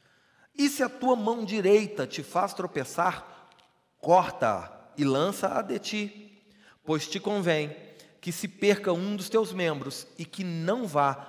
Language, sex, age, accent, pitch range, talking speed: Portuguese, male, 40-59, Brazilian, 110-165 Hz, 150 wpm